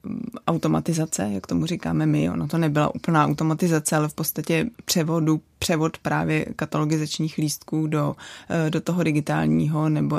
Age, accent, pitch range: 20-39, native, 150-175 Hz